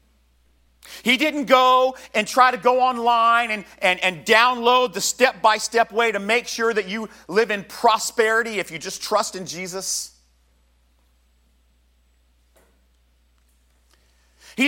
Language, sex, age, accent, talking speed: English, male, 40-59, American, 125 wpm